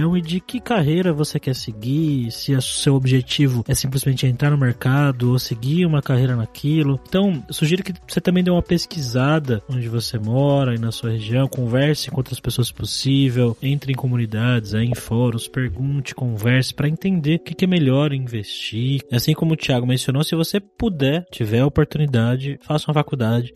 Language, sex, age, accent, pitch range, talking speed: Portuguese, male, 20-39, Brazilian, 115-145 Hz, 180 wpm